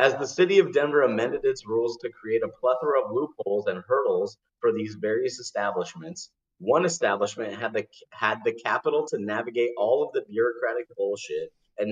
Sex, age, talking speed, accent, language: male, 30-49, 175 wpm, American, English